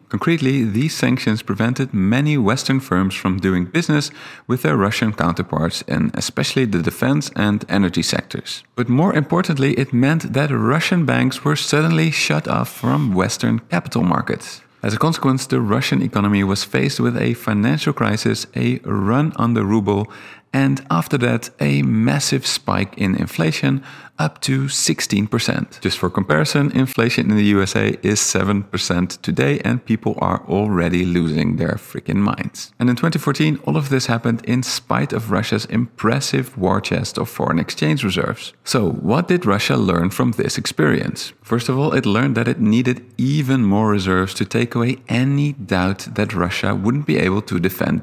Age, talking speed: 40-59, 165 wpm